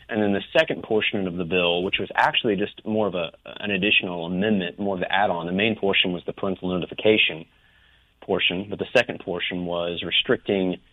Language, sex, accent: English, male, American